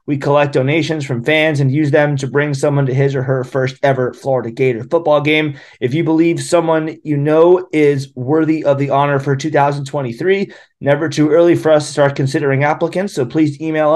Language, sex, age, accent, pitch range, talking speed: English, male, 30-49, American, 135-160 Hz, 200 wpm